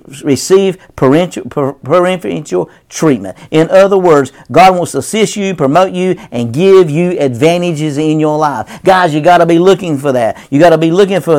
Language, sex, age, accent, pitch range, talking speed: English, male, 50-69, American, 155-195 Hz, 185 wpm